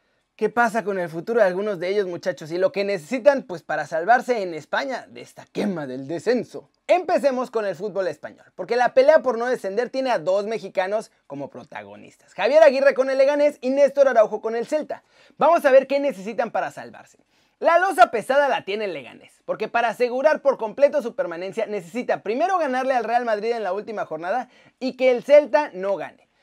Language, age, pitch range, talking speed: Spanish, 30-49, 210-285 Hz, 200 wpm